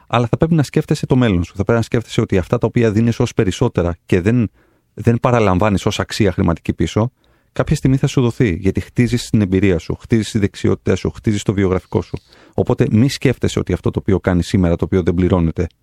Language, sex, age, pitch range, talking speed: Greek, male, 30-49, 90-120 Hz, 220 wpm